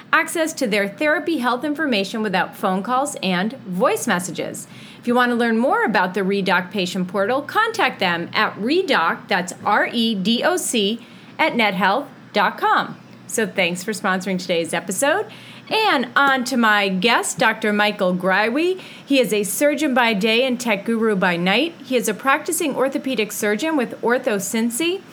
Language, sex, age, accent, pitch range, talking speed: English, female, 30-49, American, 205-280 Hz, 160 wpm